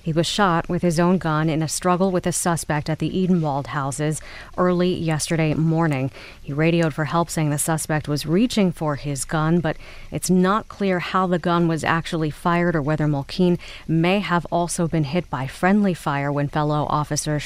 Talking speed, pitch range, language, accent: 190 wpm, 145-175 Hz, English, American